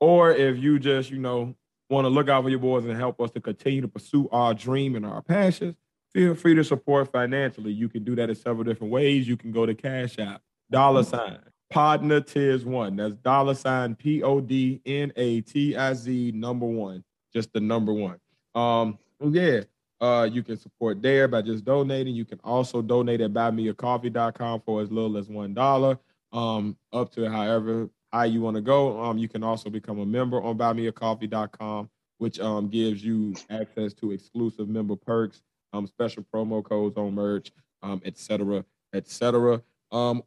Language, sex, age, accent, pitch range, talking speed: English, male, 20-39, American, 110-130 Hz, 185 wpm